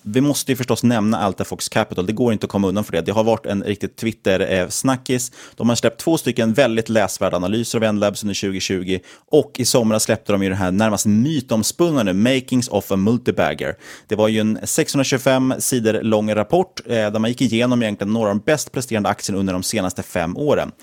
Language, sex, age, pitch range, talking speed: Swedish, male, 30-49, 100-125 Hz, 205 wpm